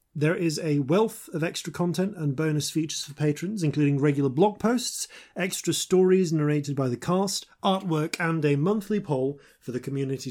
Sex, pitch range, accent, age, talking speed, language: male, 130-185 Hz, British, 30-49, 175 wpm, English